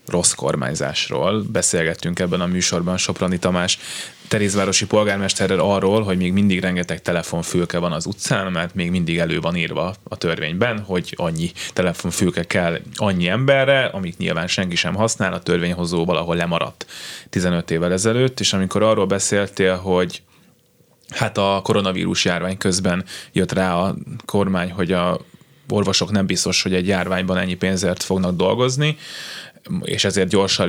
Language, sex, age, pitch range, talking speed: Hungarian, male, 20-39, 90-105 Hz, 145 wpm